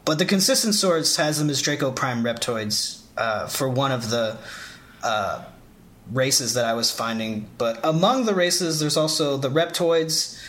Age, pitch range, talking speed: 30-49, 125-175 Hz, 165 wpm